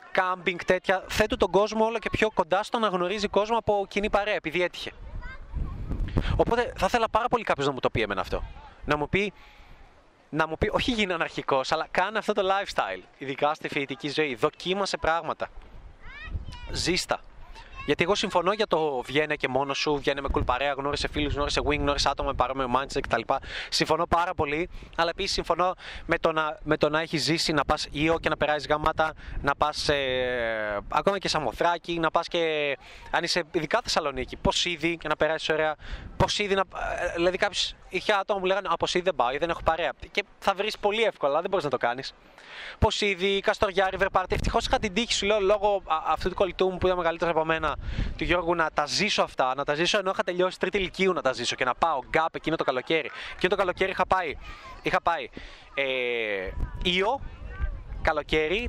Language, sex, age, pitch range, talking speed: Greek, male, 20-39, 145-195 Hz, 195 wpm